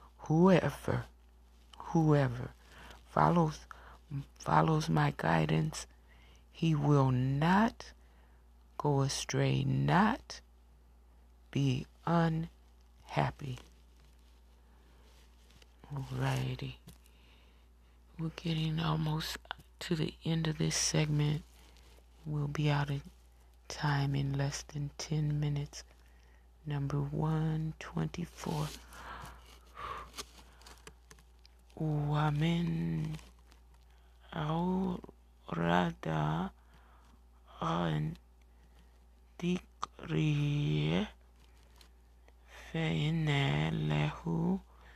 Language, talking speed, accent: English, 55 wpm, American